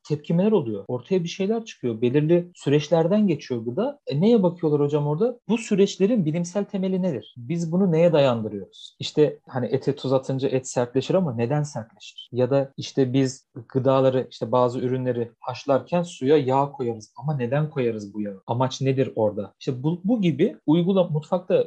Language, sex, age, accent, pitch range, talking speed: Turkish, male, 40-59, native, 130-190 Hz, 165 wpm